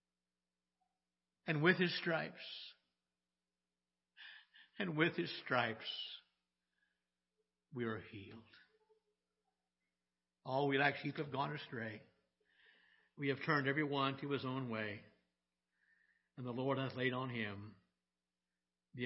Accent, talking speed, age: American, 105 wpm, 60-79